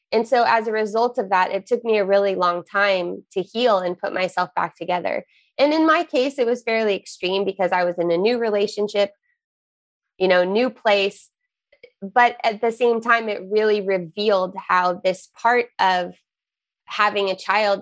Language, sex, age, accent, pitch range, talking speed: English, female, 20-39, American, 180-215 Hz, 185 wpm